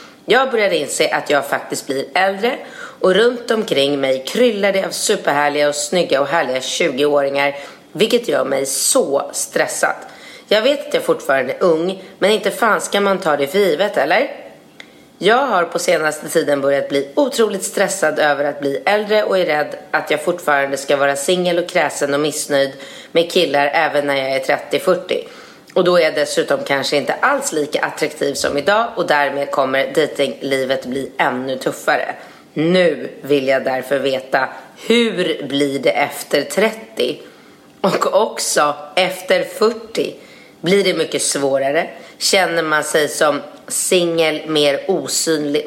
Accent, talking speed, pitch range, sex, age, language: native, 155 wpm, 140-185 Hz, female, 30-49, Swedish